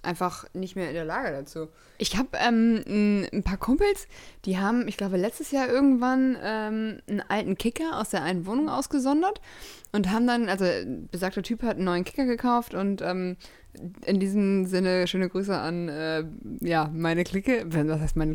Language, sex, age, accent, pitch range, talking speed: German, female, 20-39, German, 180-240 Hz, 185 wpm